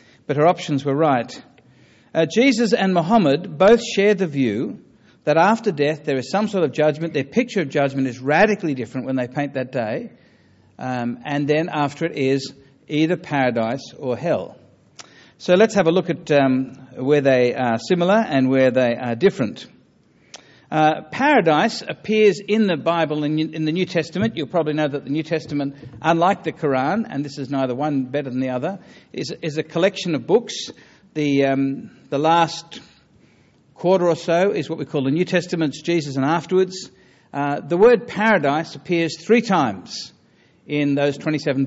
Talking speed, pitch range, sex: 175 wpm, 140-175 Hz, male